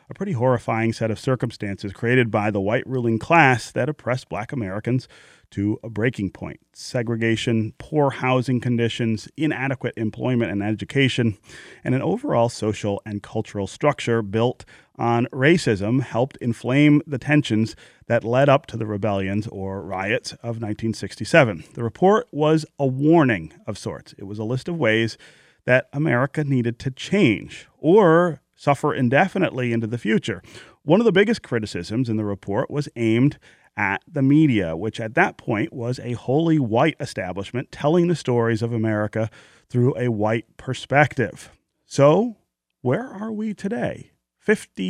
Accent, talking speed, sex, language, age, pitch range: American, 150 wpm, male, English, 30-49, 110-145 Hz